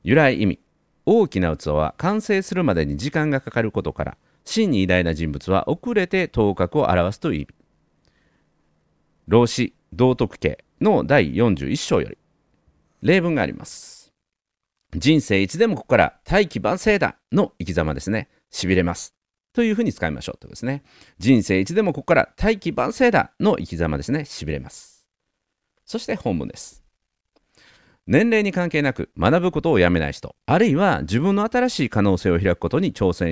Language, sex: Japanese, male